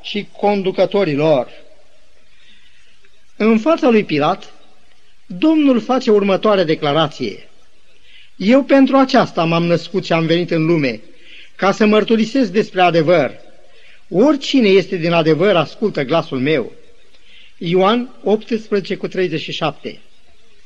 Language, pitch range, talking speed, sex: Romanian, 185-240 Hz, 105 wpm, male